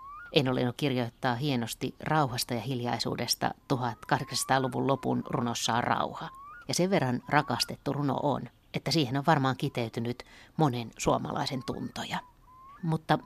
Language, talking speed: Finnish, 120 wpm